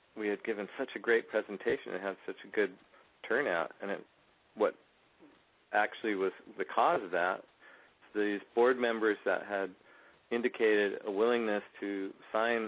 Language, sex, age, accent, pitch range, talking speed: English, male, 40-59, American, 95-115 Hz, 145 wpm